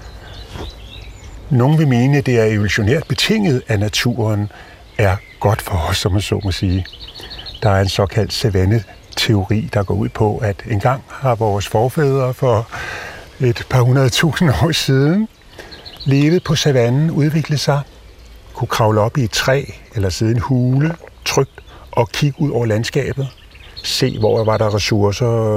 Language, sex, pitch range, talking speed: Danish, male, 100-130 Hz, 155 wpm